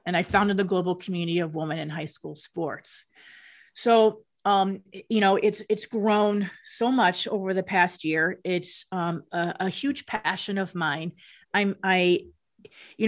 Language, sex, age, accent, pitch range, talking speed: English, female, 30-49, American, 175-200 Hz, 165 wpm